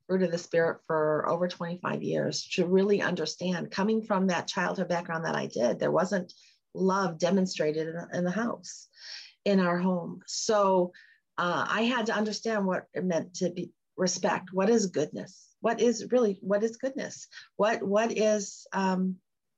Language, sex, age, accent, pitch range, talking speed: English, female, 40-59, American, 180-225 Hz, 165 wpm